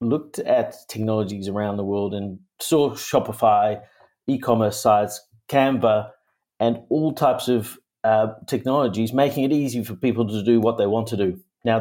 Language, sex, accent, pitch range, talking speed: English, male, Australian, 105-125 Hz, 160 wpm